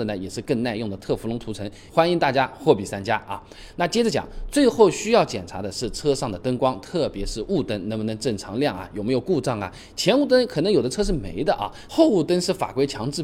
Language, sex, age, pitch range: Chinese, male, 20-39, 110-175 Hz